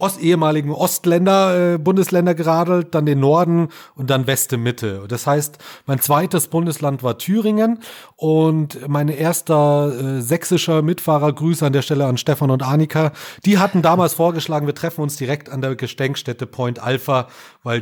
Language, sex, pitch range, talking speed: German, male, 135-165 Hz, 160 wpm